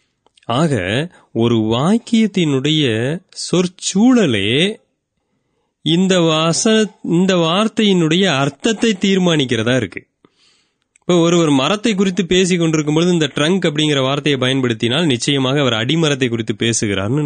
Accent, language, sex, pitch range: native, Tamil, male, 125-170 Hz